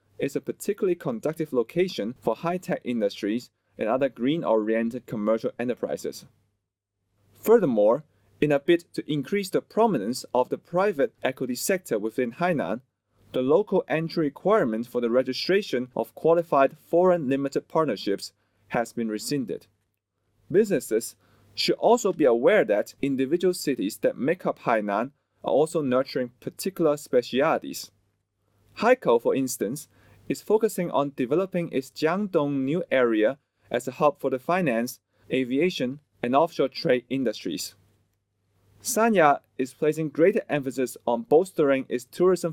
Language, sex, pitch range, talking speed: English, male, 115-170 Hz, 130 wpm